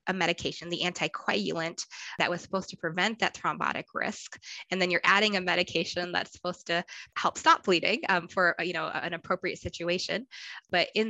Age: 20-39